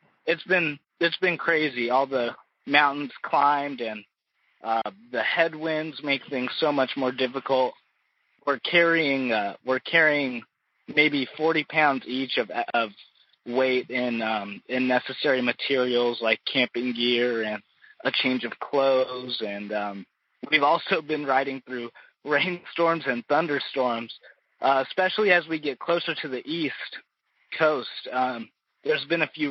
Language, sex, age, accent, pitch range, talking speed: English, male, 20-39, American, 120-155 Hz, 140 wpm